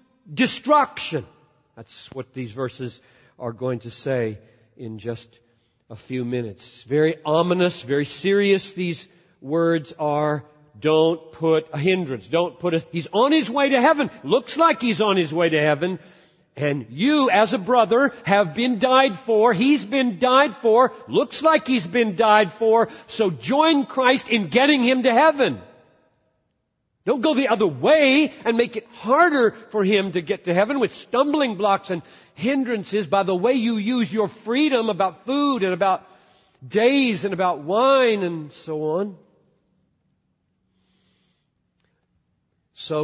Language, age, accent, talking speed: English, 50-69, American, 150 wpm